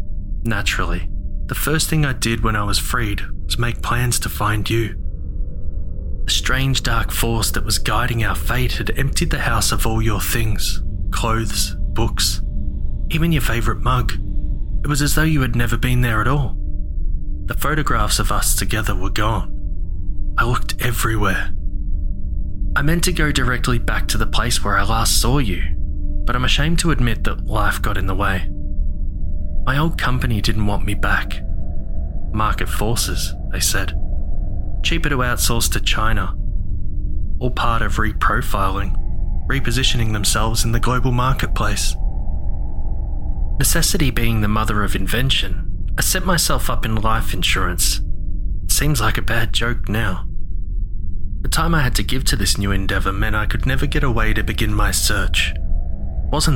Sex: male